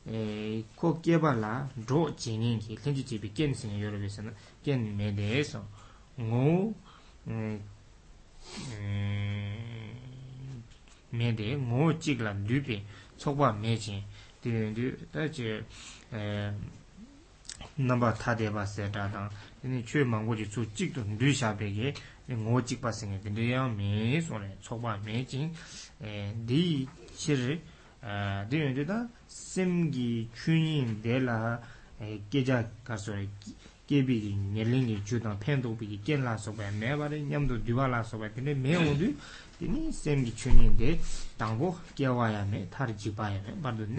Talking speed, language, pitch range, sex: 40 wpm, English, 105-135 Hz, male